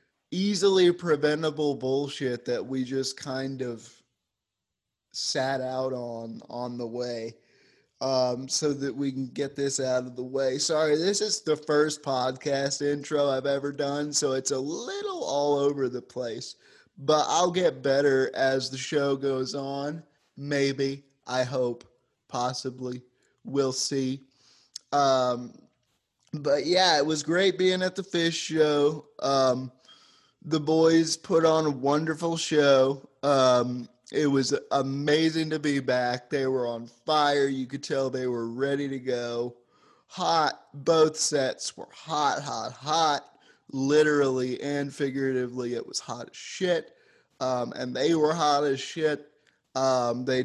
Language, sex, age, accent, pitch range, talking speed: English, male, 30-49, American, 130-150 Hz, 145 wpm